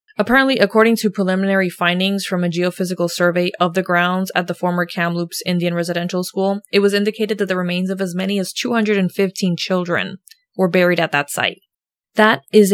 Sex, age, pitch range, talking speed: female, 20-39, 180-210 Hz, 180 wpm